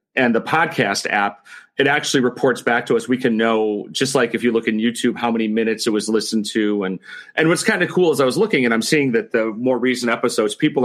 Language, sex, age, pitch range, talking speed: English, male, 40-59, 110-150 Hz, 255 wpm